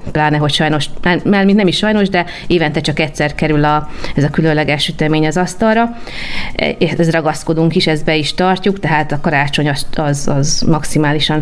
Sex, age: female, 30-49